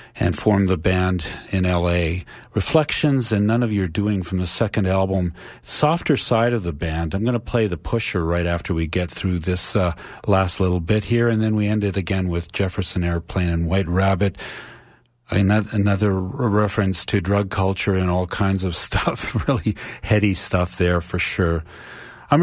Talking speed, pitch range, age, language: 180 wpm, 90-115 Hz, 50-69, English